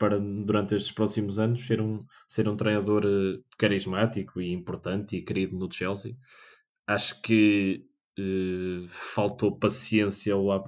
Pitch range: 100-115 Hz